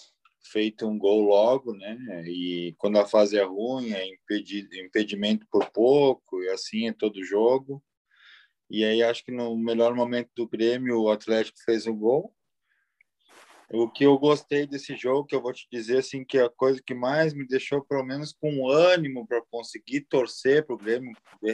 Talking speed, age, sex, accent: 180 wpm, 20-39, male, Brazilian